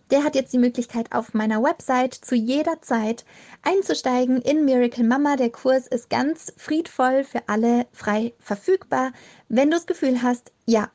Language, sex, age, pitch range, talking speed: German, female, 20-39, 230-275 Hz, 165 wpm